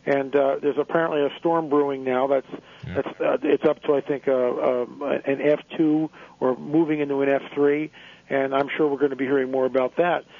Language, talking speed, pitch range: English, 210 wpm, 145-165 Hz